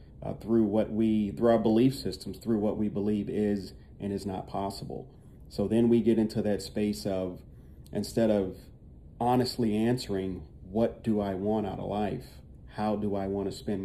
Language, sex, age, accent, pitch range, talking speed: English, male, 40-59, American, 95-110 Hz, 180 wpm